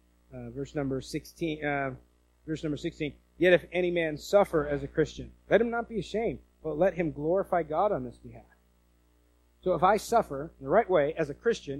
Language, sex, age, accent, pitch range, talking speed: English, male, 40-59, American, 130-170 Hz, 205 wpm